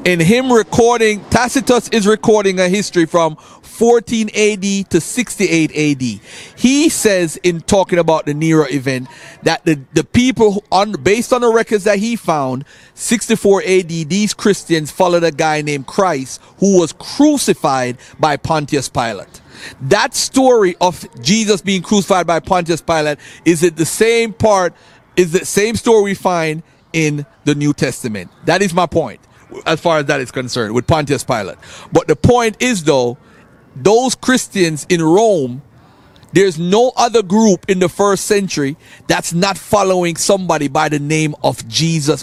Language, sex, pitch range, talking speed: English, male, 155-215 Hz, 160 wpm